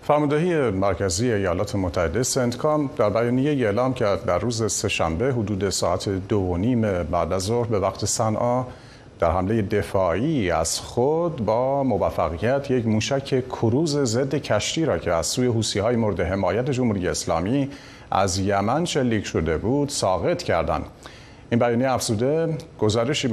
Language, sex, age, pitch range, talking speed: Persian, male, 50-69, 100-130 Hz, 145 wpm